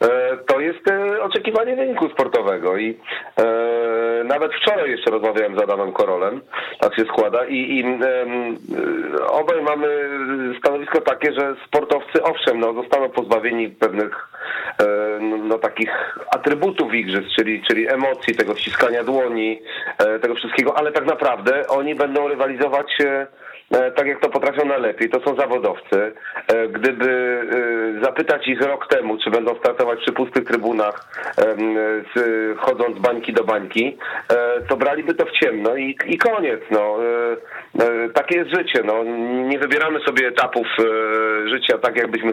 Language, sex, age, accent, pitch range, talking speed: Polish, male, 40-59, native, 115-145 Hz, 135 wpm